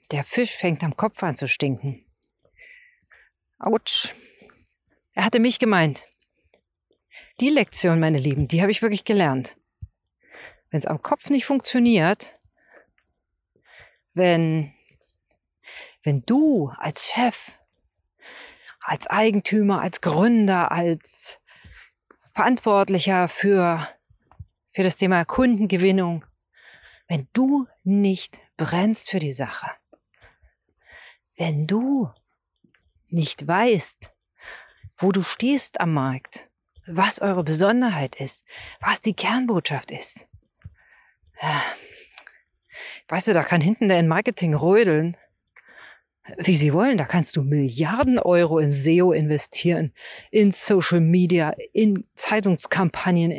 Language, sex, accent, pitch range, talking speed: German, female, German, 160-220 Hz, 105 wpm